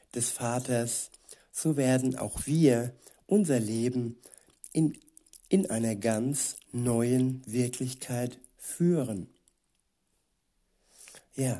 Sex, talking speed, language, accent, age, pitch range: male, 85 wpm, German, German, 60-79, 115-130 Hz